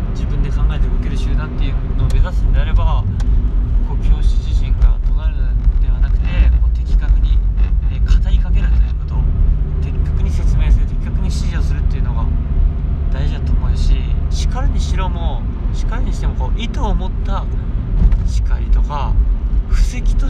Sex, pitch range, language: male, 65-85 Hz, Japanese